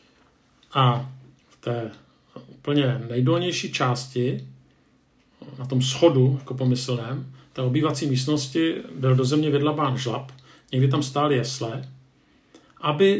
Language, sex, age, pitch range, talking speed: Czech, male, 50-69, 125-140 Hz, 110 wpm